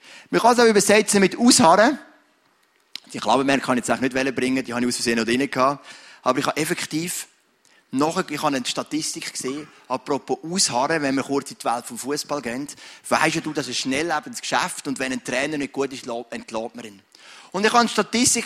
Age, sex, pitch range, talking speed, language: 30-49, male, 140-220 Hz, 215 wpm, English